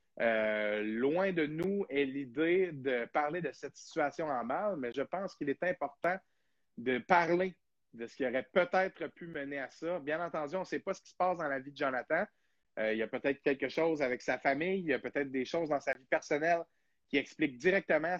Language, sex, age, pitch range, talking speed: French, male, 30-49, 130-180 Hz, 225 wpm